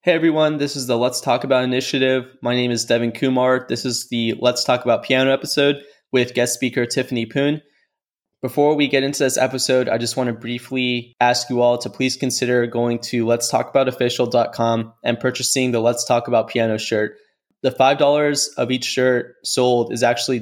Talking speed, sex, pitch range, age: 180 wpm, male, 115-130 Hz, 20-39